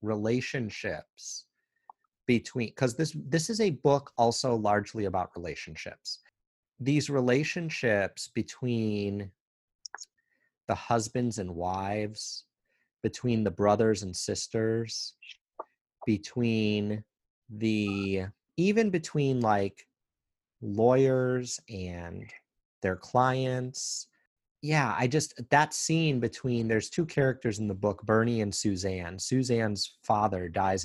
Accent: American